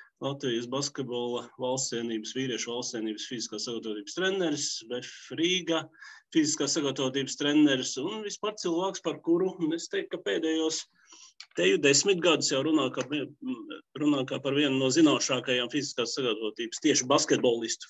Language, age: English, 30-49